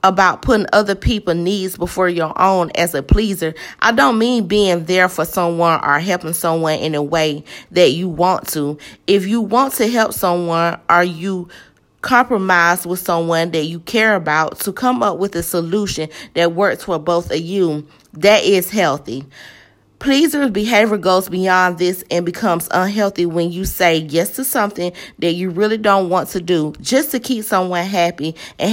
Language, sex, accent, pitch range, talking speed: English, female, American, 170-210 Hz, 180 wpm